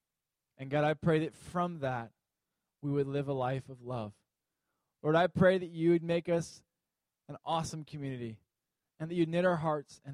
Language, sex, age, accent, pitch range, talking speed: English, male, 20-39, American, 125-165 Hz, 190 wpm